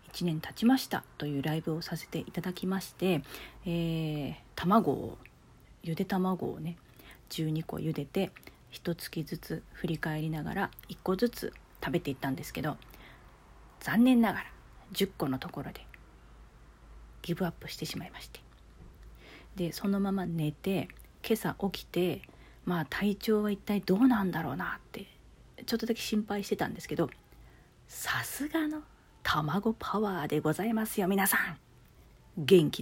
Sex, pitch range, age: female, 150-205 Hz, 40-59